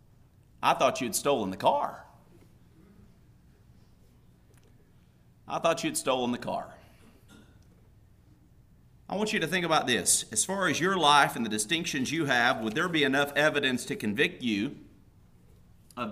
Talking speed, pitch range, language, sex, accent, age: 140 wpm, 150-225 Hz, English, male, American, 40-59